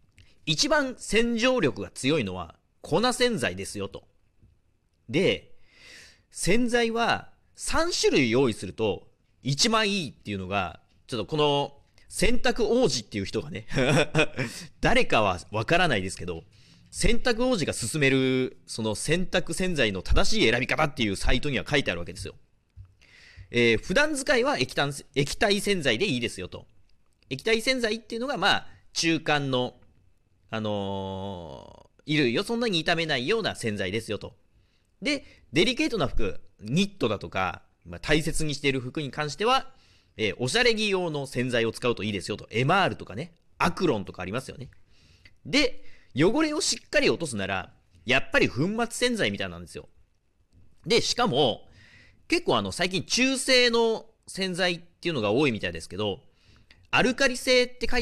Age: 40-59